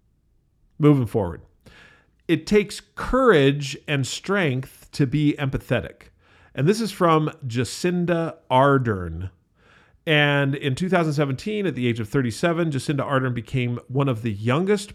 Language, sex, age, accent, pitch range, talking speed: English, male, 40-59, American, 115-150 Hz, 125 wpm